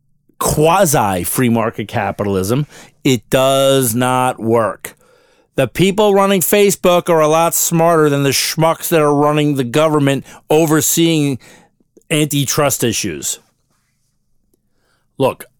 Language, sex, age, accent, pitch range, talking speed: English, male, 40-59, American, 130-185 Hz, 105 wpm